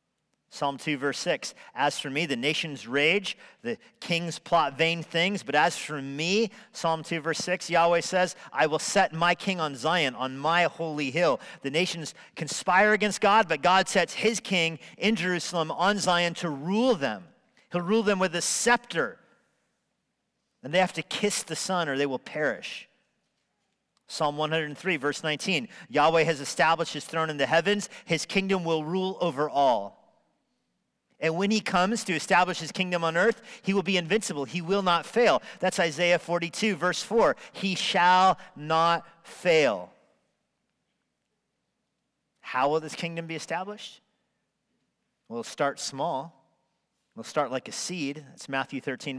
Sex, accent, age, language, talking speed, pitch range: male, American, 40-59, English, 160 wpm, 155-190 Hz